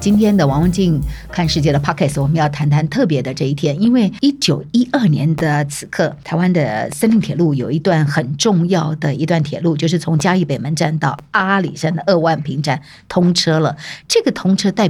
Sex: female